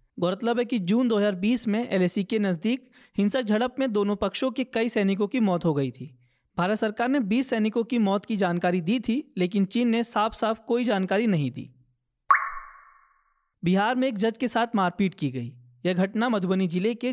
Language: Hindi